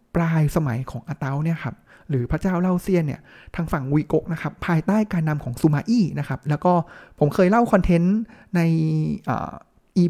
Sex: male